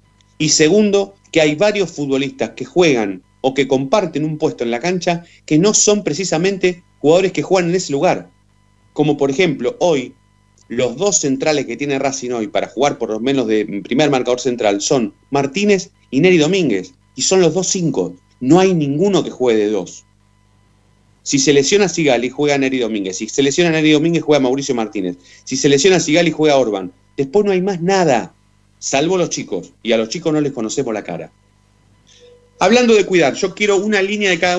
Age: 30-49